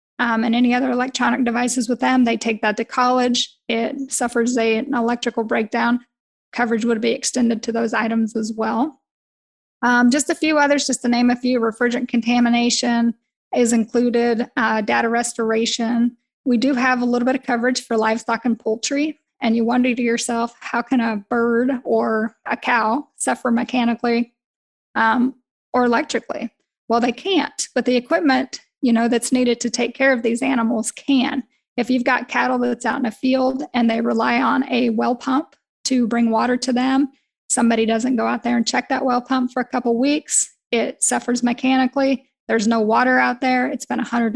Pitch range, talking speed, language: 230-255 Hz, 185 wpm, English